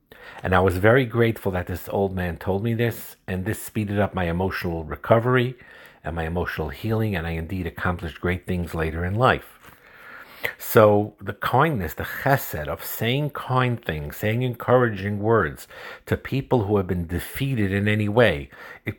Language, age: English, 50-69